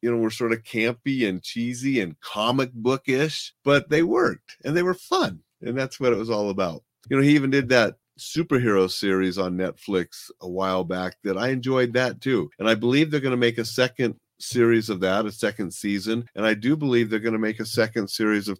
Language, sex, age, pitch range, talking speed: English, male, 40-59, 90-120 Hz, 225 wpm